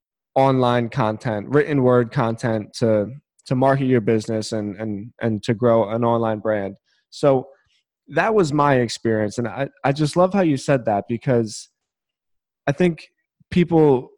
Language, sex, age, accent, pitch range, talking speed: English, male, 20-39, American, 120-150 Hz, 150 wpm